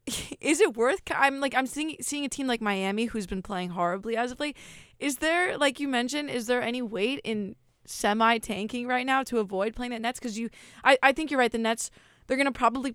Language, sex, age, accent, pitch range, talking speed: English, female, 20-39, American, 215-265 Hz, 230 wpm